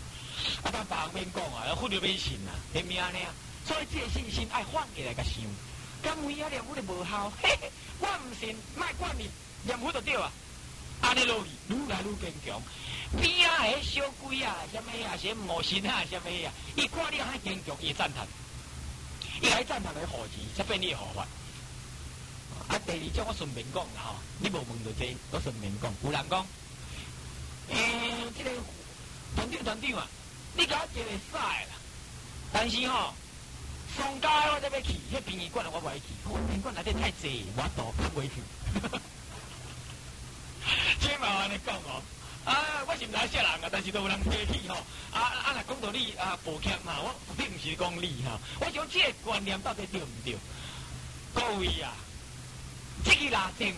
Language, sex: Chinese, male